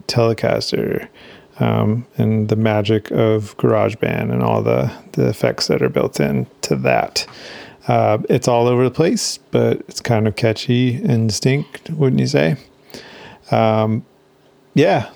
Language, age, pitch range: English, 30-49, 110-125 Hz